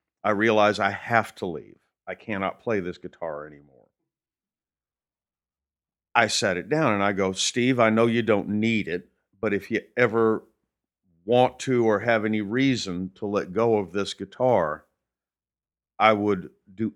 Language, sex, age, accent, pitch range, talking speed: English, male, 50-69, American, 95-115 Hz, 160 wpm